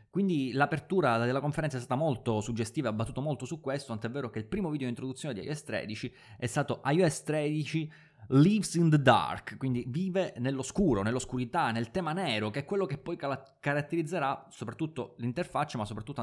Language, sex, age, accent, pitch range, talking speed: Italian, male, 20-39, native, 120-155 Hz, 180 wpm